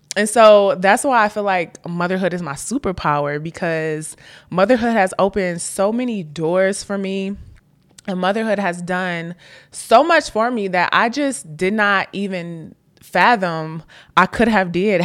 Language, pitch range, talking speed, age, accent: English, 165-210 Hz, 155 wpm, 20-39, American